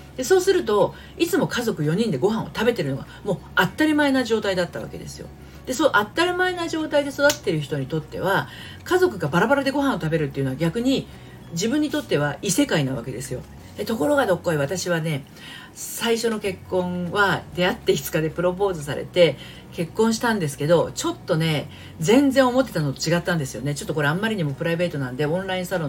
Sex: female